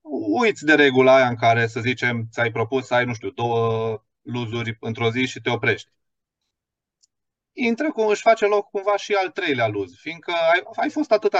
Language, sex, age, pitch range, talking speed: Romanian, male, 30-49, 105-145 Hz, 190 wpm